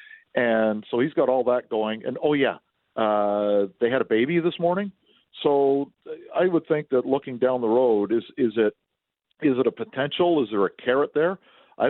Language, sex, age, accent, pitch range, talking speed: English, male, 50-69, American, 95-115 Hz, 195 wpm